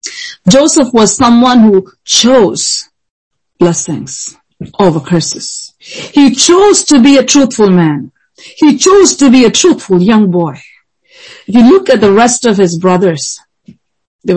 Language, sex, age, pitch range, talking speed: English, female, 40-59, 180-240 Hz, 140 wpm